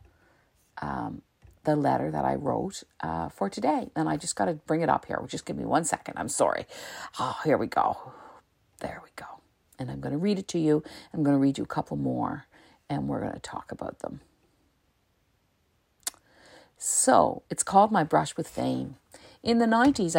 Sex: female